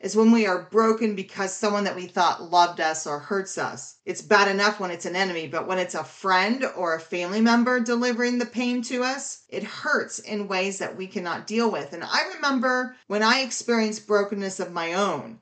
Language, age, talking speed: English, 40-59, 215 wpm